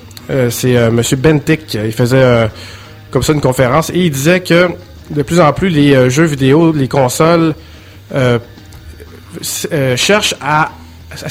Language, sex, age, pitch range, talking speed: French, male, 30-49, 115-150 Hz, 165 wpm